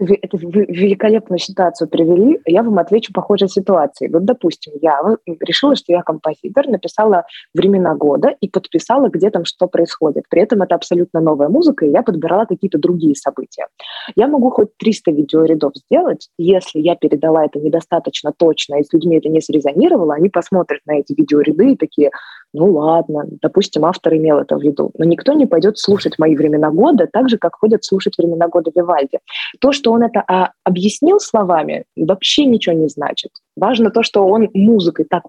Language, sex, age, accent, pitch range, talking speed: Russian, female, 20-39, native, 160-220 Hz, 175 wpm